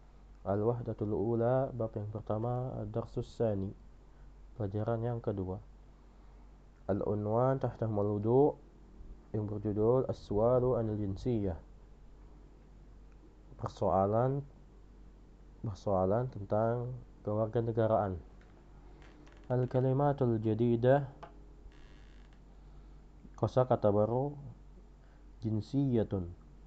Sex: male